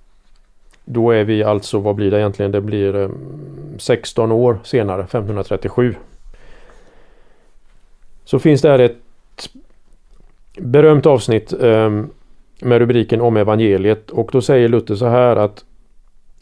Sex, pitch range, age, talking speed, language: male, 105-135 Hz, 40-59, 115 wpm, Swedish